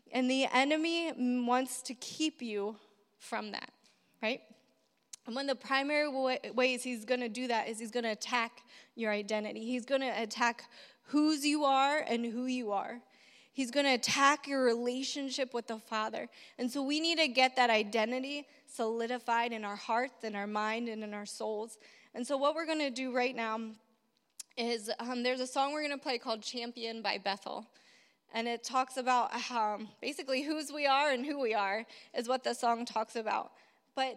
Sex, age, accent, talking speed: female, 20-39, American, 190 wpm